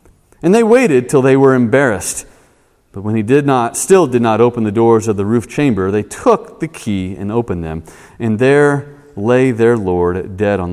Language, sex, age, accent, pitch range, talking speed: English, male, 40-59, American, 115-165 Hz, 200 wpm